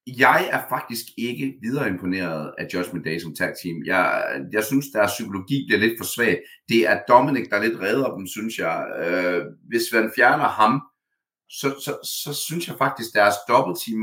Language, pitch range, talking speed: Danish, 110-160 Hz, 185 wpm